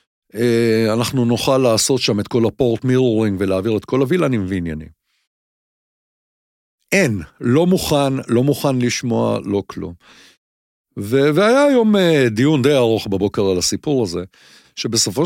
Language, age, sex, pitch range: English, 50-69, male, 100-165 Hz